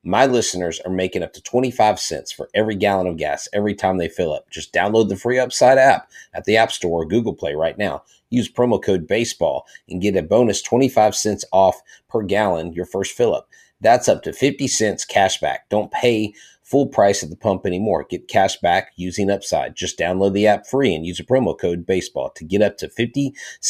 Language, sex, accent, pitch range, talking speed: English, male, American, 90-115 Hz, 220 wpm